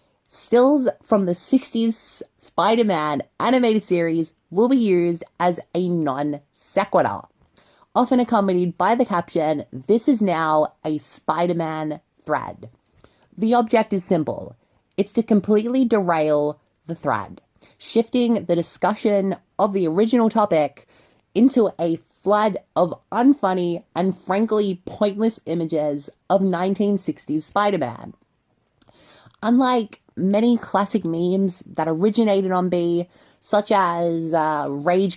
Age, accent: 30-49, American